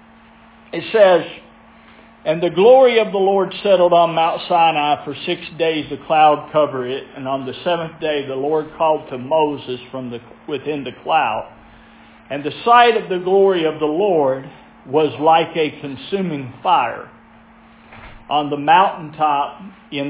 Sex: male